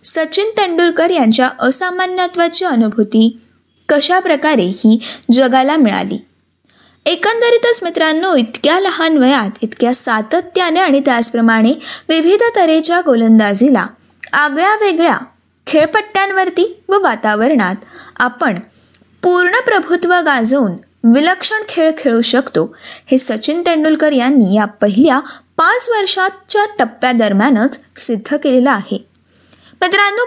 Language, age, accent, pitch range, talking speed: Marathi, 20-39, native, 235-360 Hz, 95 wpm